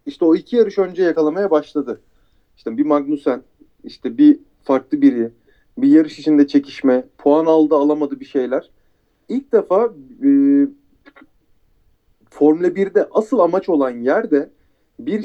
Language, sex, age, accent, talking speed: Turkish, male, 40-59, native, 130 wpm